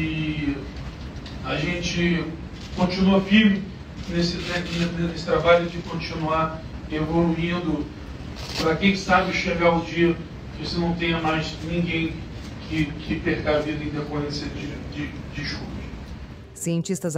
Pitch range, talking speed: 140-190 Hz, 125 wpm